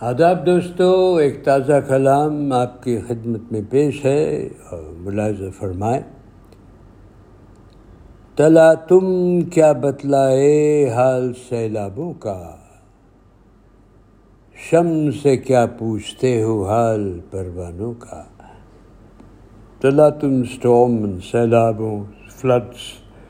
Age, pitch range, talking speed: 60-79, 105-145 Hz, 80 wpm